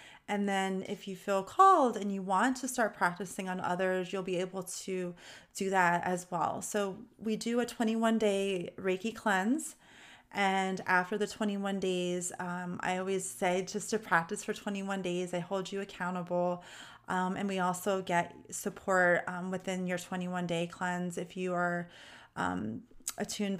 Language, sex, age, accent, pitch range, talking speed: English, female, 30-49, American, 180-215 Hz, 165 wpm